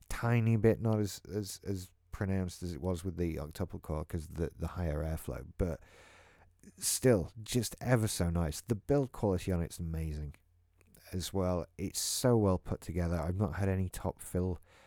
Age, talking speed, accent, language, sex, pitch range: 30-49, 180 wpm, British, English, male, 85-100 Hz